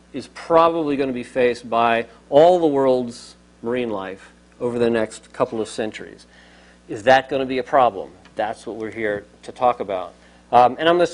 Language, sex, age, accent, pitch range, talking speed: English, male, 50-69, American, 110-145 Hz, 200 wpm